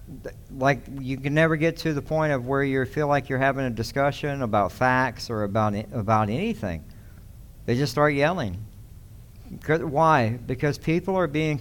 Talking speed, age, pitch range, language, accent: 165 wpm, 60-79, 110-145 Hz, English, American